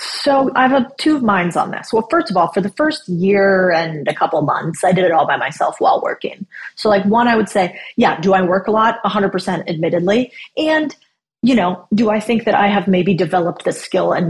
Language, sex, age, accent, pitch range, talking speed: English, female, 30-49, American, 185-230 Hz, 230 wpm